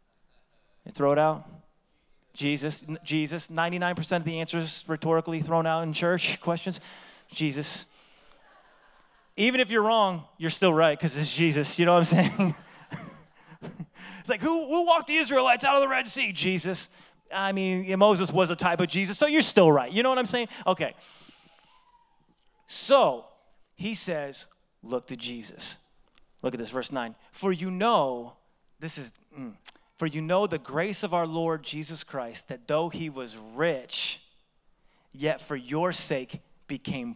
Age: 30-49